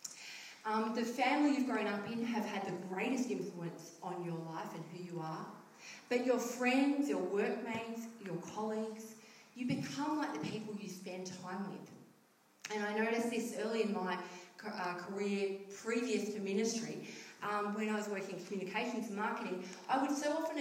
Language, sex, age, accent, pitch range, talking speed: English, female, 30-49, Australian, 190-240 Hz, 170 wpm